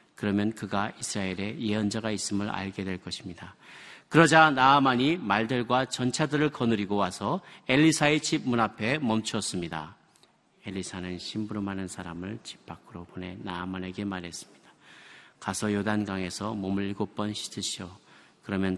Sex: male